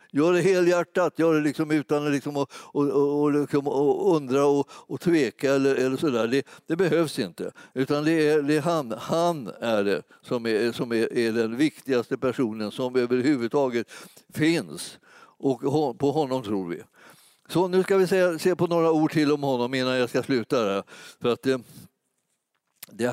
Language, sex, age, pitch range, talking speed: Swedish, male, 60-79, 120-150 Hz, 170 wpm